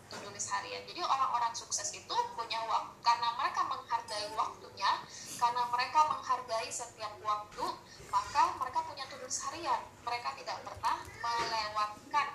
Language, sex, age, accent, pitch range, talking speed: Indonesian, female, 10-29, native, 215-305 Hz, 125 wpm